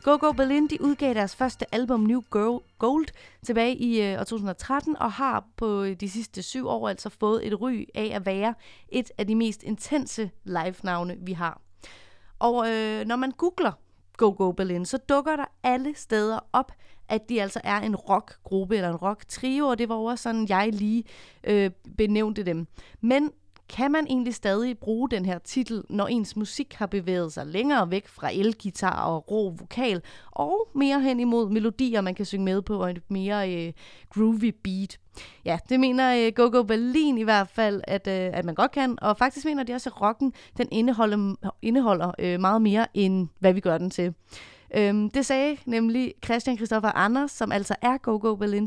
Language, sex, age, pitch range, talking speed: Danish, female, 30-49, 200-250 Hz, 195 wpm